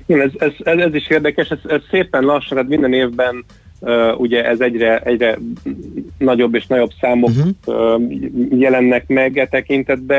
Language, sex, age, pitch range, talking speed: Hungarian, male, 30-49, 115-130 Hz, 165 wpm